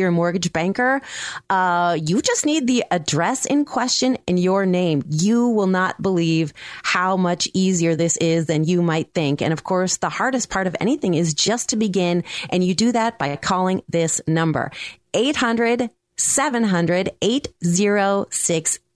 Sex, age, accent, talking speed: female, 30-49, American, 155 wpm